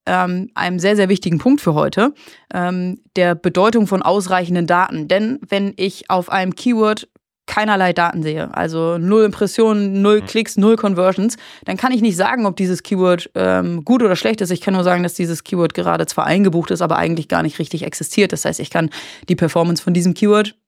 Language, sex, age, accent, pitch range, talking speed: German, female, 30-49, German, 180-215 Hz, 190 wpm